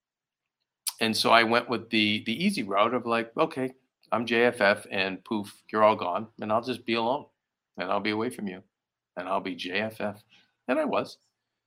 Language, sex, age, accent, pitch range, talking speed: English, male, 40-59, American, 100-120 Hz, 190 wpm